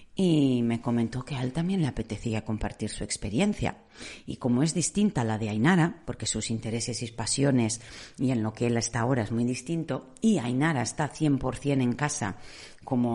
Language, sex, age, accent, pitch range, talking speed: Spanish, female, 40-59, Spanish, 110-150 Hz, 185 wpm